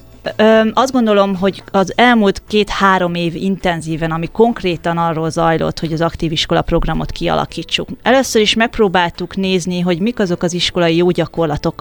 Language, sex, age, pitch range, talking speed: Hungarian, female, 20-39, 165-190 Hz, 145 wpm